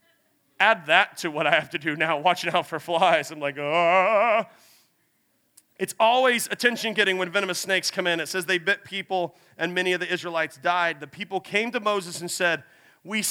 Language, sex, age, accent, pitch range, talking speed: English, male, 40-59, American, 160-195 Hz, 195 wpm